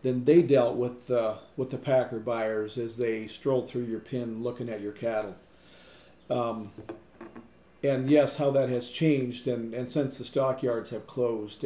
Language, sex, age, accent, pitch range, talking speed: English, male, 40-59, American, 115-140 Hz, 170 wpm